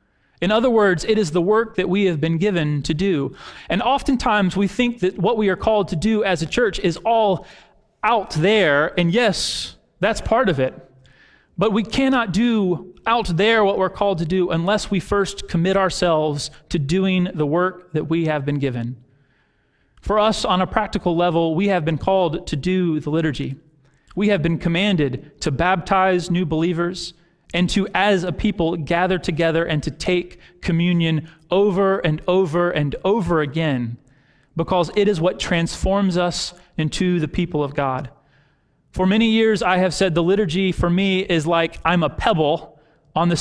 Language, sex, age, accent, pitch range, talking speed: English, male, 30-49, American, 155-190 Hz, 180 wpm